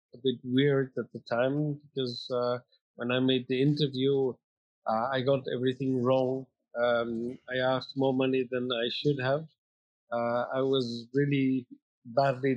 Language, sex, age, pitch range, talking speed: English, male, 50-69, 125-145 Hz, 155 wpm